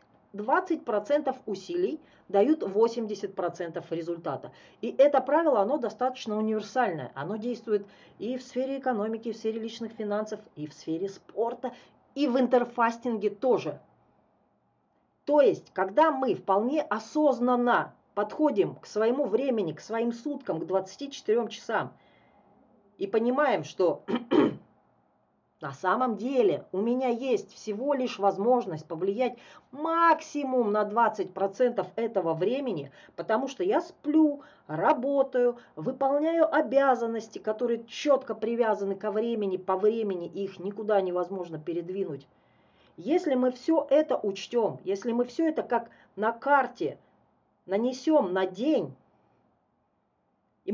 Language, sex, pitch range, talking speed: Russian, female, 210-275 Hz, 115 wpm